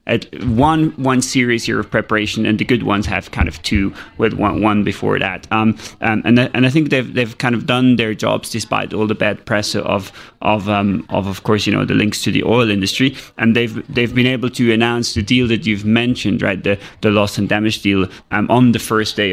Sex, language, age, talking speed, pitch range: male, English, 20-39, 235 wpm, 105-125 Hz